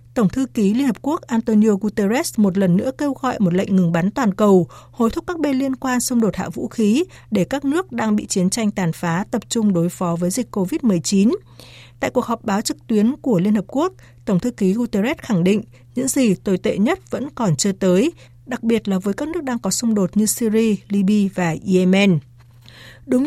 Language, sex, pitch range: Vietnamese, female, 185-245 Hz